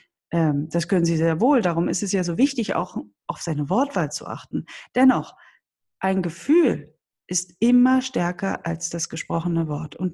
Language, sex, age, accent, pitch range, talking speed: German, female, 30-49, German, 170-235 Hz, 165 wpm